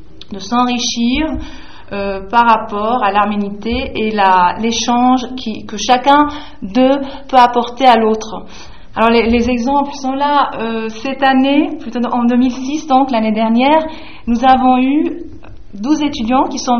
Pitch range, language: 220-260 Hz, French